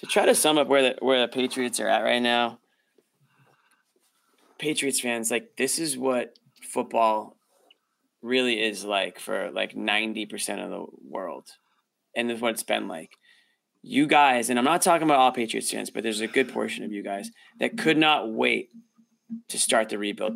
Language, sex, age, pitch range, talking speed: English, male, 20-39, 115-155 Hz, 185 wpm